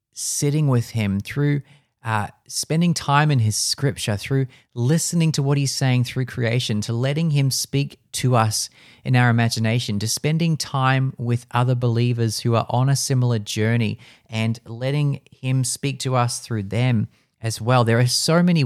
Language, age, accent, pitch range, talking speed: English, 30-49, Australian, 110-135 Hz, 170 wpm